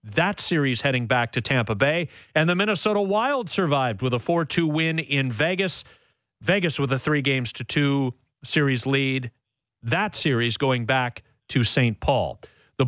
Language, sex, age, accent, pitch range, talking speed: English, male, 40-59, American, 125-150 Hz, 165 wpm